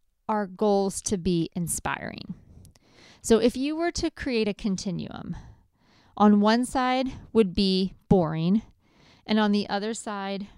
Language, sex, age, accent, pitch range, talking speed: English, female, 40-59, American, 180-225 Hz, 130 wpm